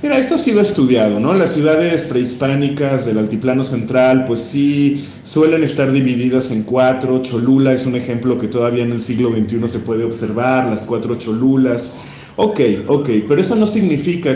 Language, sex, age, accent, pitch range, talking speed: Spanish, male, 40-59, Mexican, 125-170 Hz, 170 wpm